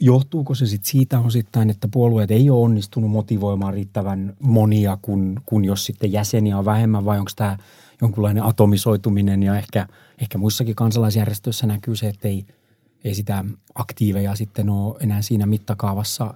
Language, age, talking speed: Finnish, 30-49, 155 wpm